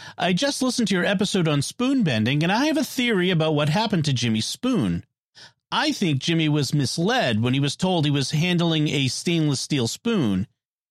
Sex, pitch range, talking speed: male, 145-215 Hz, 200 wpm